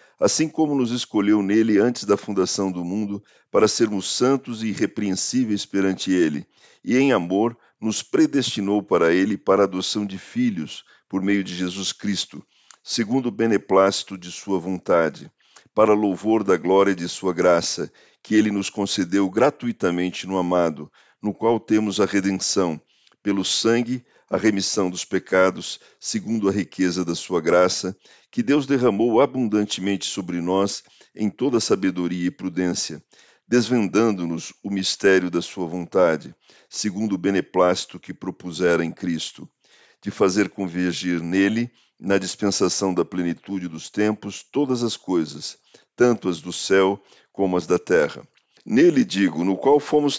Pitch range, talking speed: 95-115 Hz, 145 wpm